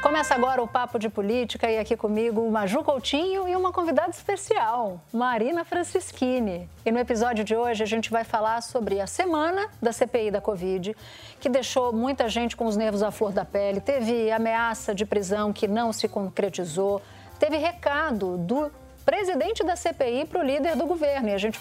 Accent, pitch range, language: Brazilian, 220-290 Hz, Portuguese